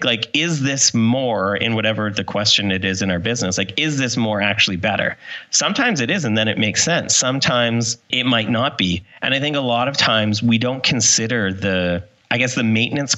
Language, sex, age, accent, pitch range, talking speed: English, male, 30-49, American, 100-120 Hz, 215 wpm